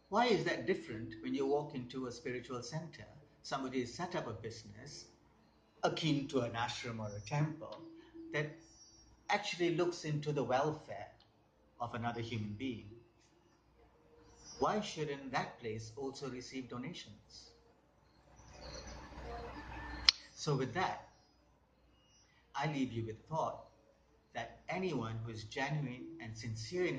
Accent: Indian